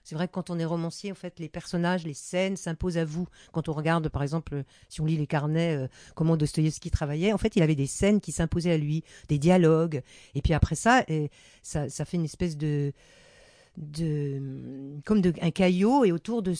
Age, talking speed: 50-69, 215 wpm